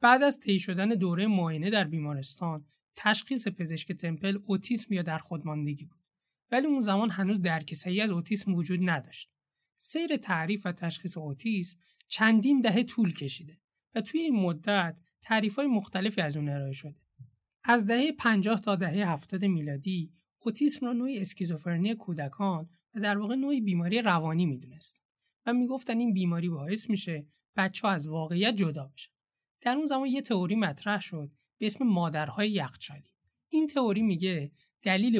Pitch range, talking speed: 160-220 Hz, 155 wpm